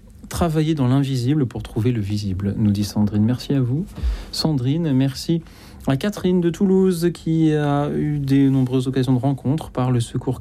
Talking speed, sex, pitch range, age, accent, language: 175 wpm, male, 115-150 Hz, 40-59, French, French